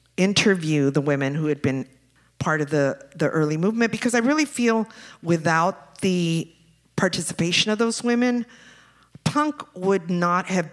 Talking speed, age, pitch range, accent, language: 145 wpm, 50-69, 155-200 Hz, American, English